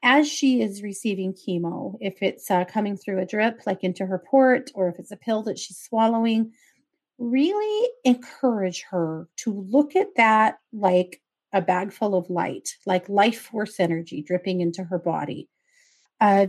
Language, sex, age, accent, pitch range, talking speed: English, female, 30-49, American, 185-245 Hz, 165 wpm